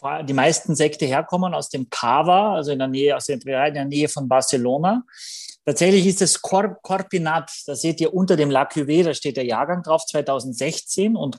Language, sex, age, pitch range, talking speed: German, male, 30-49, 135-180 Hz, 185 wpm